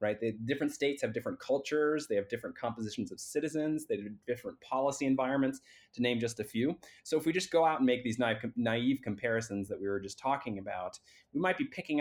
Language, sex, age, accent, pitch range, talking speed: English, male, 30-49, American, 110-145 Hz, 225 wpm